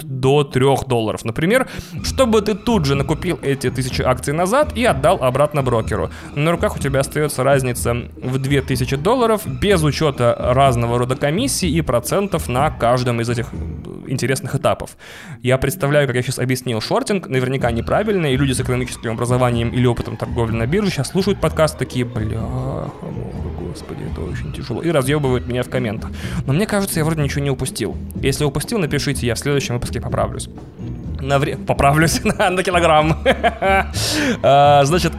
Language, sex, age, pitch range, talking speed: Russian, male, 20-39, 125-155 Hz, 165 wpm